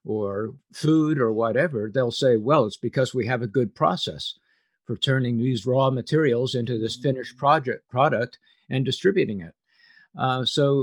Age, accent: 50-69, American